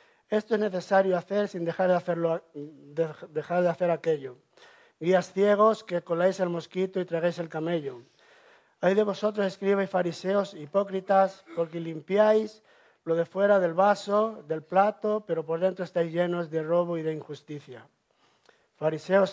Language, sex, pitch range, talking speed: English, male, 170-195 Hz, 150 wpm